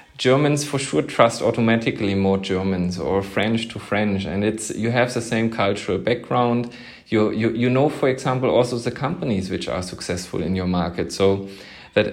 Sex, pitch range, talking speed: male, 100-120 Hz, 180 wpm